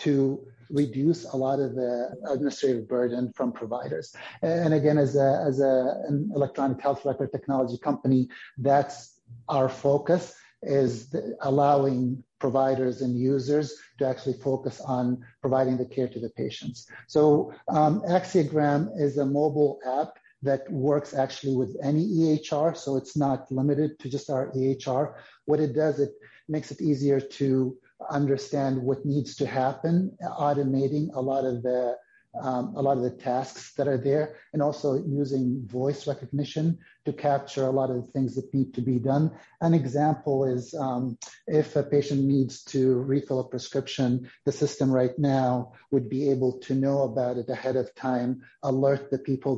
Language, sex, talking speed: English, male, 160 wpm